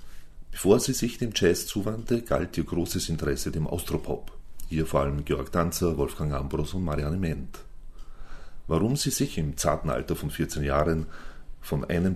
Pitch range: 75-90 Hz